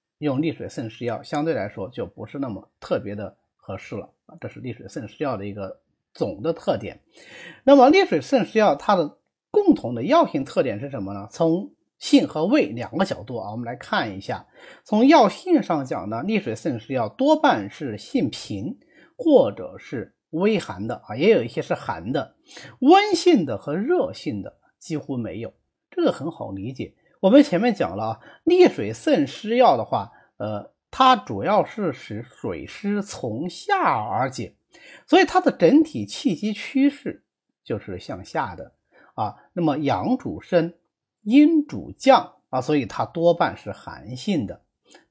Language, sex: Chinese, male